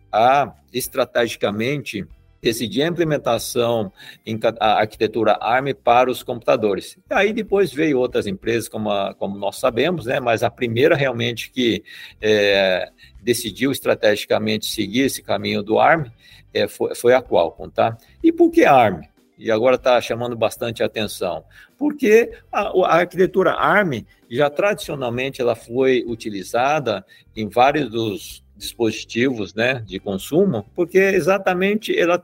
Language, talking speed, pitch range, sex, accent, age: Portuguese, 125 wpm, 110-165 Hz, male, Brazilian, 50-69